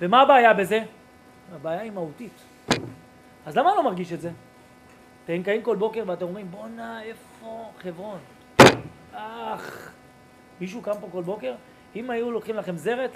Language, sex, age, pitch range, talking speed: Hebrew, male, 30-49, 175-250 Hz, 150 wpm